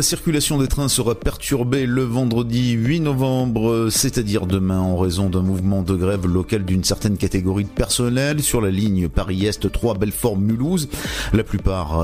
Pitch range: 95-120 Hz